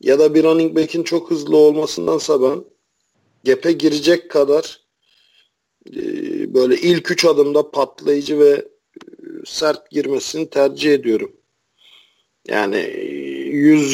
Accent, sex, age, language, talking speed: native, male, 50-69, Turkish, 105 wpm